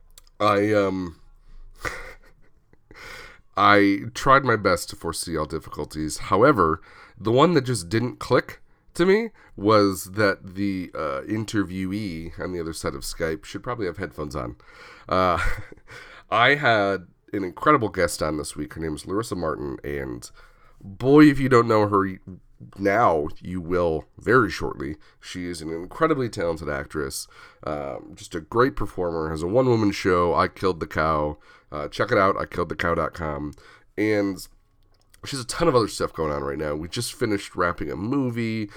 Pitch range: 80-105 Hz